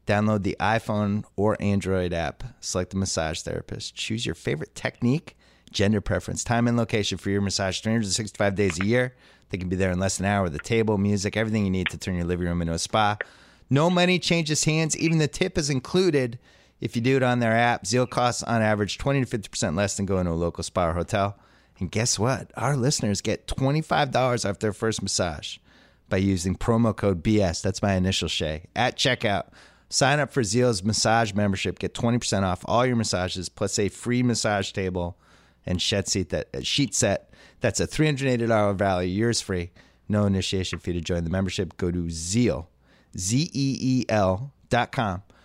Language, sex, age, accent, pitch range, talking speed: English, male, 30-49, American, 90-115 Hz, 195 wpm